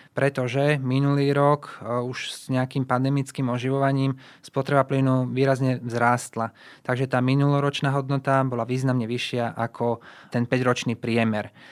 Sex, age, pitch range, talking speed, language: male, 20-39, 125-140 Hz, 120 wpm, Slovak